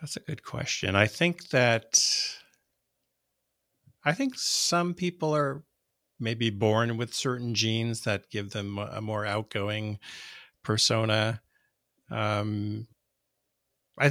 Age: 50-69